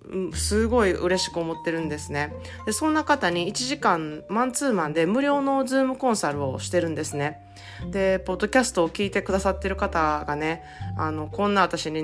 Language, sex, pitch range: Japanese, female, 160-205 Hz